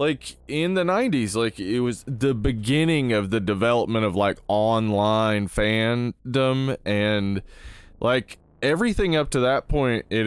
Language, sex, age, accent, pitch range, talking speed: English, male, 20-39, American, 100-135 Hz, 140 wpm